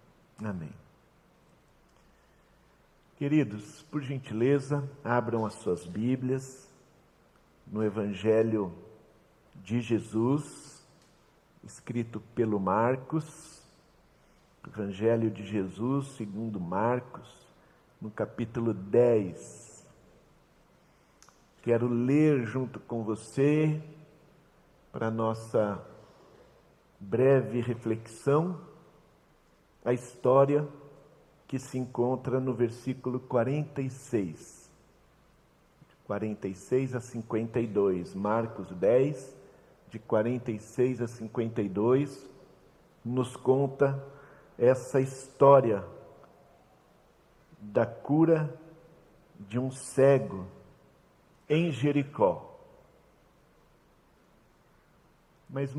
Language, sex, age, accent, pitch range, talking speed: Portuguese, male, 50-69, Brazilian, 110-140 Hz, 65 wpm